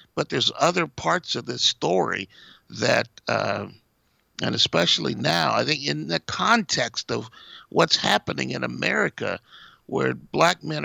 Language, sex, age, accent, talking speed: English, male, 50-69, American, 140 wpm